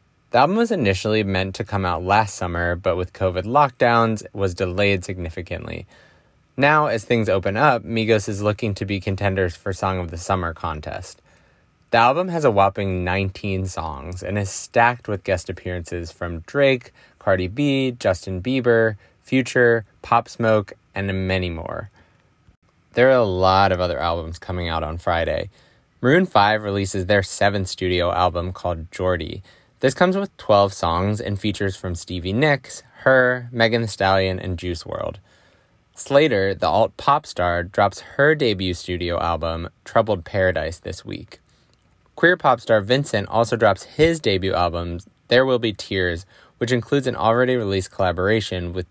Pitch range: 90-115 Hz